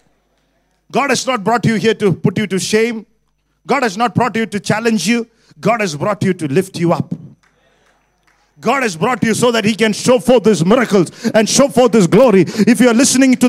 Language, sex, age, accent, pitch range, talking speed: English, male, 50-69, Indian, 210-265 Hz, 220 wpm